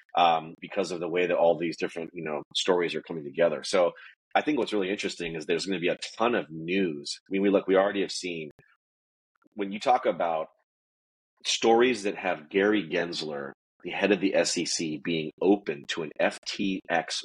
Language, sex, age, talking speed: English, male, 30-49, 200 wpm